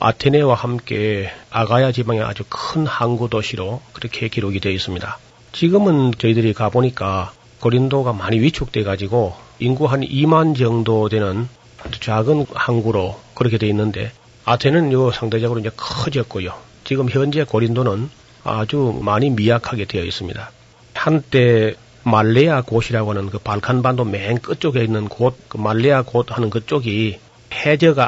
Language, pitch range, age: Korean, 110-130 Hz, 40-59